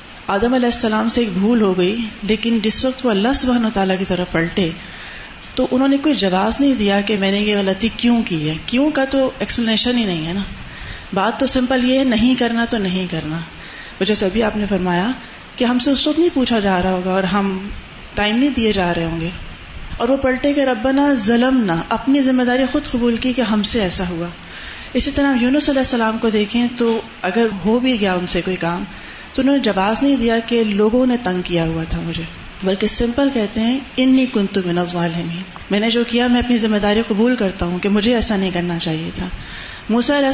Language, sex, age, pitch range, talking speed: Urdu, female, 30-49, 195-250 Hz, 230 wpm